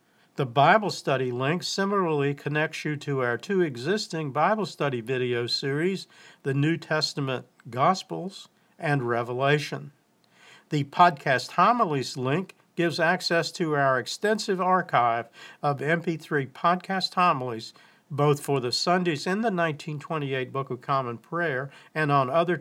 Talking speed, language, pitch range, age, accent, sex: 130 wpm, English, 135-180 Hz, 50-69, American, male